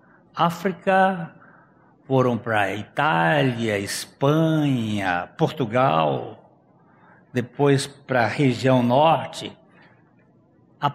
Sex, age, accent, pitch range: male, 60-79, Brazilian, 130-175 Hz